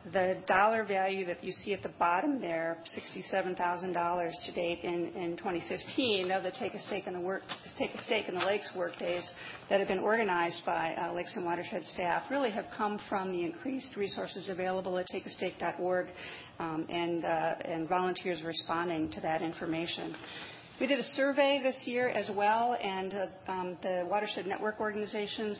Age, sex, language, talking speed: 40-59, female, English, 175 wpm